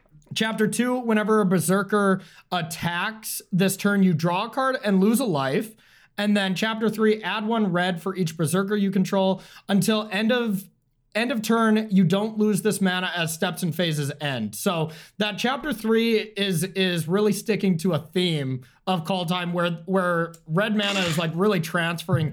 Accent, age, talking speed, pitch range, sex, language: American, 30-49, 175 wpm, 165-210 Hz, male, English